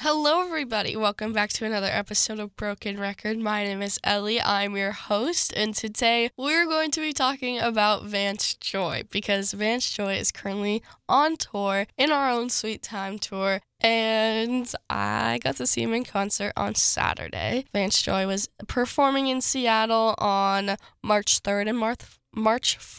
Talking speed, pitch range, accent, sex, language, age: 165 wpm, 195-225 Hz, American, female, English, 10-29